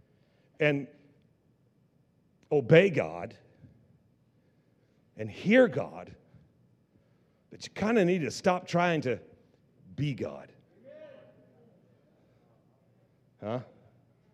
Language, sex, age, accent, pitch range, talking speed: English, male, 50-69, American, 115-155 Hz, 75 wpm